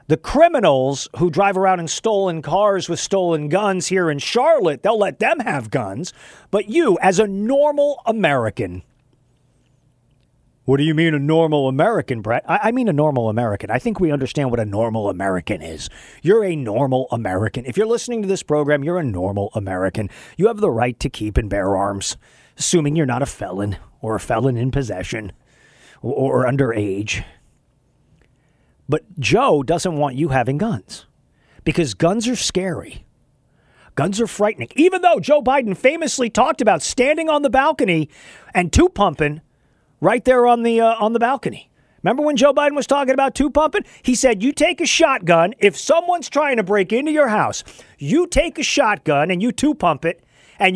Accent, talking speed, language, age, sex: American, 180 wpm, English, 40-59, male